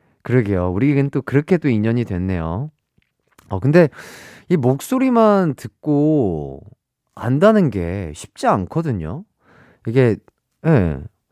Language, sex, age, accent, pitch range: Korean, male, 30-49, native, 100-160 Hz